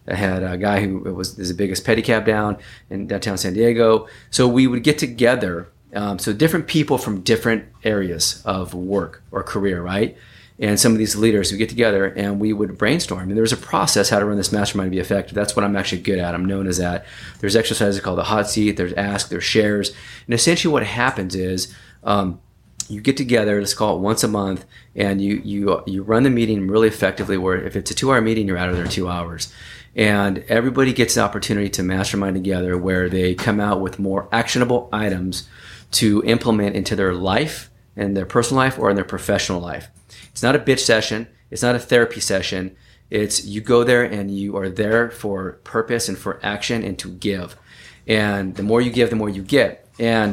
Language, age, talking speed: English, 30-49, 210 wpm